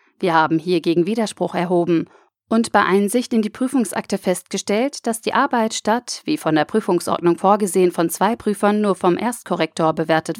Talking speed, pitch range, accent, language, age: 160 wpm, 170-225 Hz, German, German, 40-59